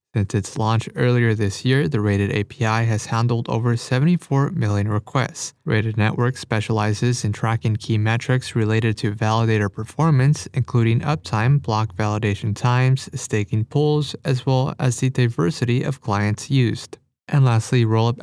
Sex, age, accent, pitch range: male, 20-39, American, 110-130 Hz